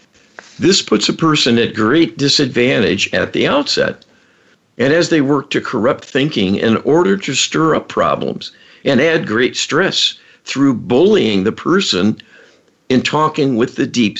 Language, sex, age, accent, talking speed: English, male, 60-79, American, 150 wpm